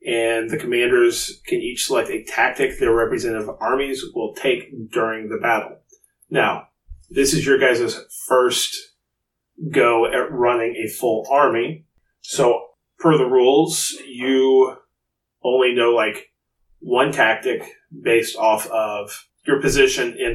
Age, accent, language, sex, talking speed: 30-49, American, English, male, 130 wpm